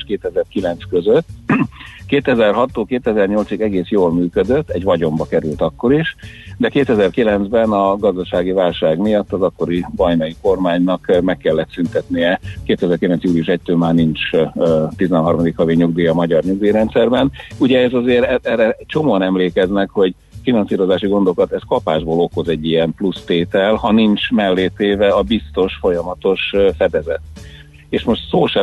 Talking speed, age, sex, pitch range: 130 wpm, 50-69, male, 85-110 Hz